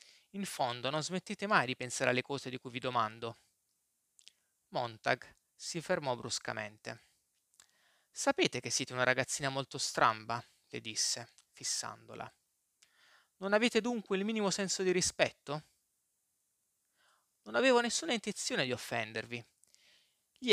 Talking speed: 125 wpm